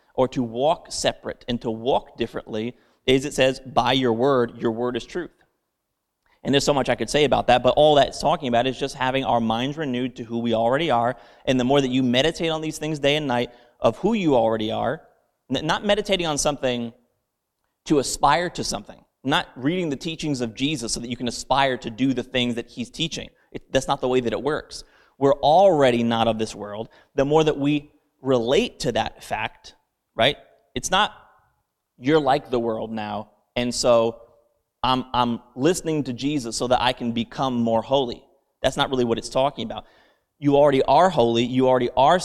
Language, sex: English, male